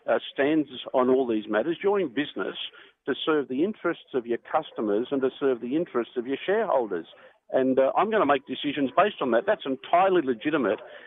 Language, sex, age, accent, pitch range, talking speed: English, male, 50-69, Australian, 130-175 Hz, 195 wpm